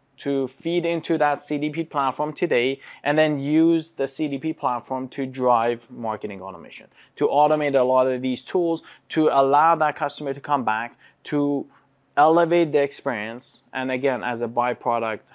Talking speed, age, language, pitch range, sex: 155 wpm, 20-39, English, 125-150 Hz, male